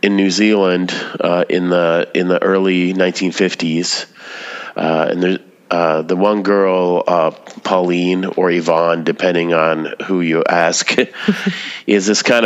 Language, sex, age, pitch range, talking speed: English, male, 30-49, 80-95 Hz, 140 wpm